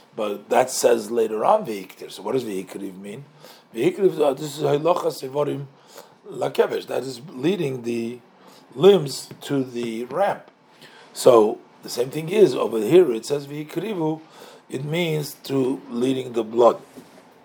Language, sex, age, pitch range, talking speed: English, male, 50-69, 130-210 Hz, 125 wpm